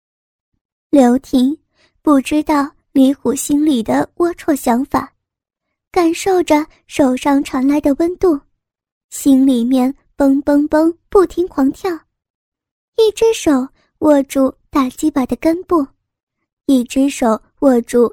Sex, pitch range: male, 270-340 Hz